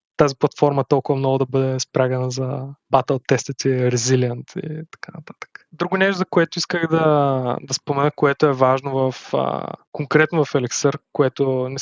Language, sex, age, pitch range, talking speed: Bulgarian, male, 20-39, 140-165 Hz, 160 wpm